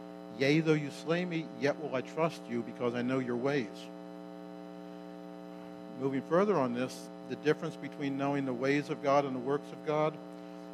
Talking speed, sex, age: 180 wpm, male, 50-69